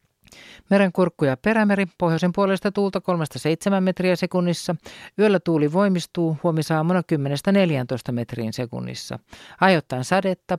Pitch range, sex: 160-195 Hz, male